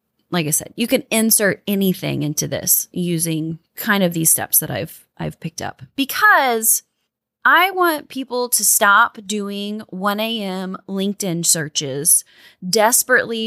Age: 20-39